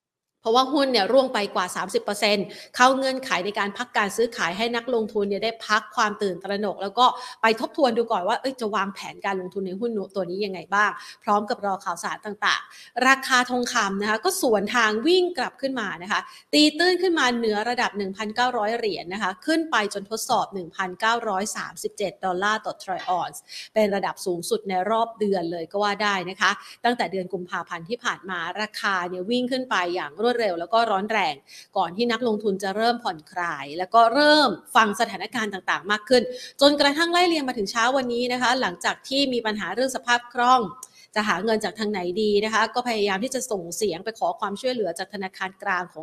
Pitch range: 195-245 Hz